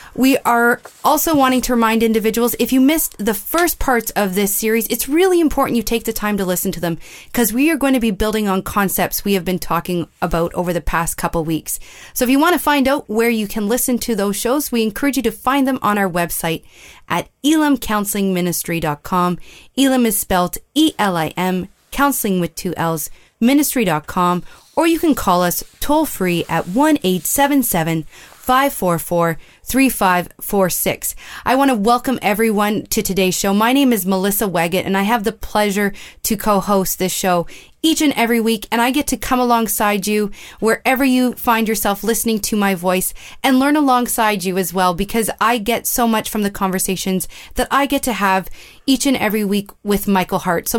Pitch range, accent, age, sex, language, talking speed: 185-250 Hz, American, 30-49, female, English, 190 wpm